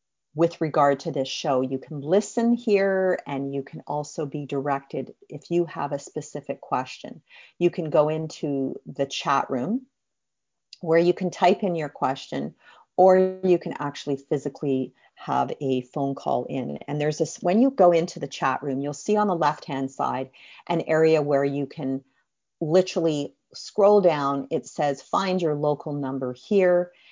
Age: 40-59